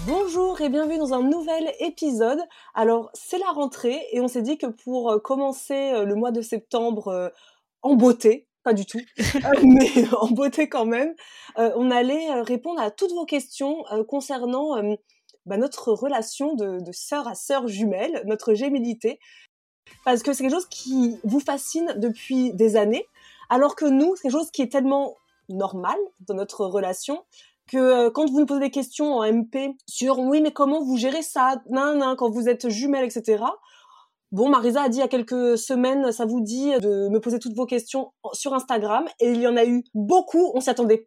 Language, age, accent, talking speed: French, 20-39, French, 190 wpm